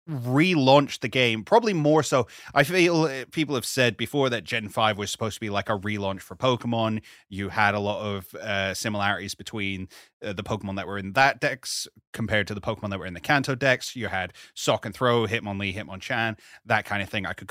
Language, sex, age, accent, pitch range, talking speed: English, male, 30-49, British, 110-150 Hz, 215 wpm